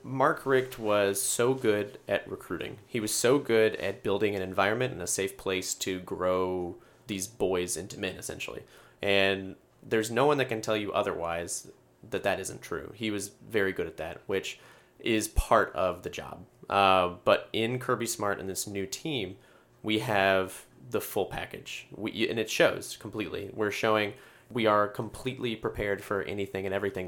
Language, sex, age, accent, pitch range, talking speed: English, male, 30-49, American, 95-115 Hz, 175 wpm